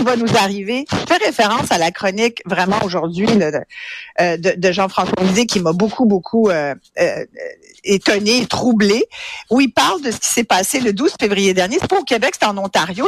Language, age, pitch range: French, 50-69, 190-250 Hz